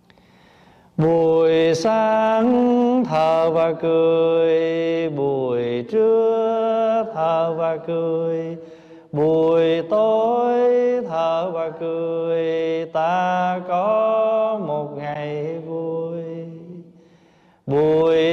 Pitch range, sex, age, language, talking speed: 160-215 Hz, male, 30-49, Vietnamese, 70 wpm